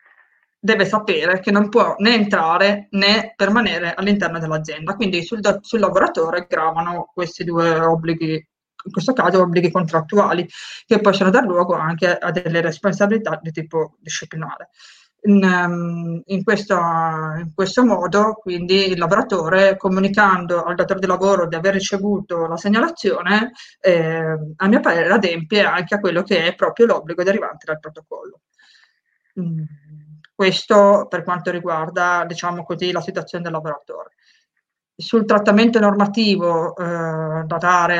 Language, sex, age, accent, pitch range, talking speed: Italian, female, 20-39, native, 170-200 Hz, 135 wpm